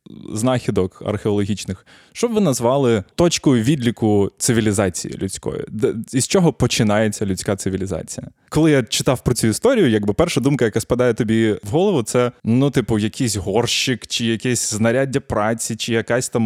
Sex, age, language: male, 20-39, Ukrainian